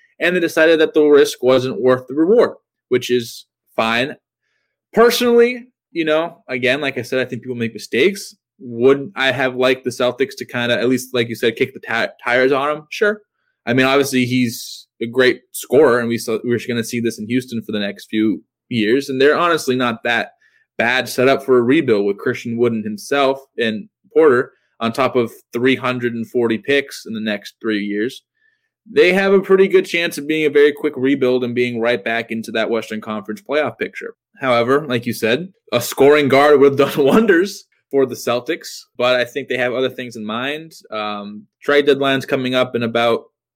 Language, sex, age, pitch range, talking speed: English, male, 20-39, 120-155 Hz, 205 wpm